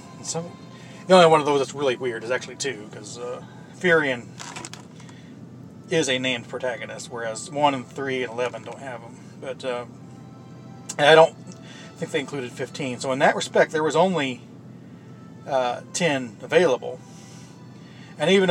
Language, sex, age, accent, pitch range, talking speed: English, male, 40-59, American, 130-170 Hz, 160 wpm